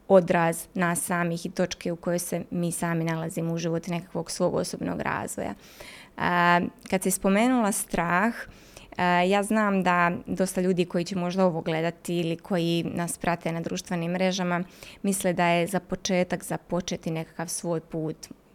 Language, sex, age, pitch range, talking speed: Croatian, female, 20-39, 180-210 Hz, 155 wpm